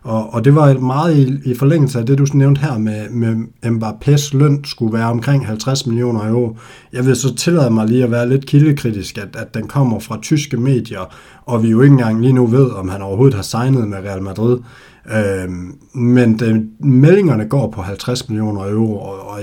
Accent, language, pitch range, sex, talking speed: native, Danish, 110-135 Hz, male, 190 wpm